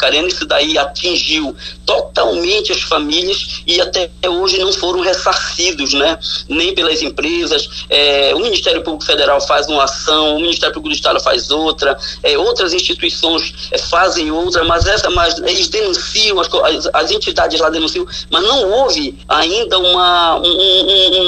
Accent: Brazilian